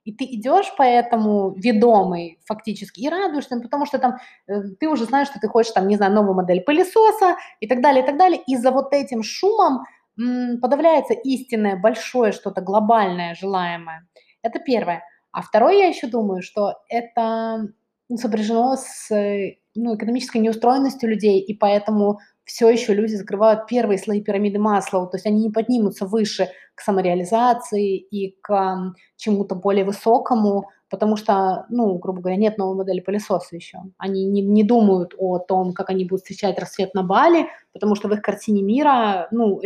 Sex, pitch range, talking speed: female, 195-240 Hz, 165 wpm